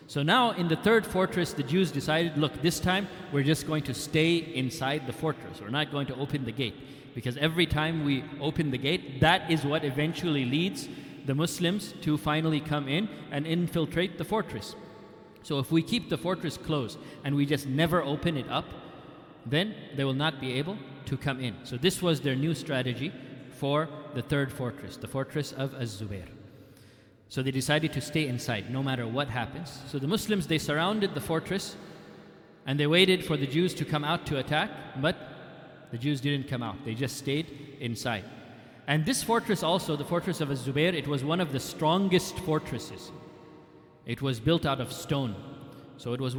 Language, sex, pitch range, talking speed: English, male, 135-170 Hz, 190 wpm